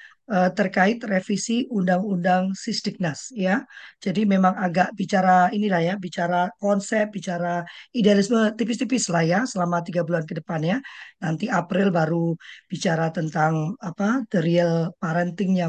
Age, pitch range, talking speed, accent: 20-39, 175-215 Hz, 120 wpm, native